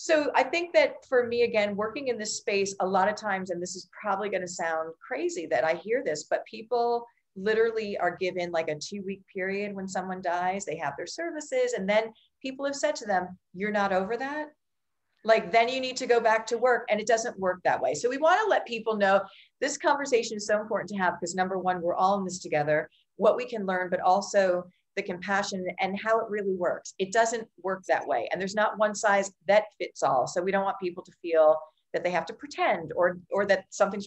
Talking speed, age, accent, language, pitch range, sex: 235 wpm, 40-59, American, English, 175-230 Hz, female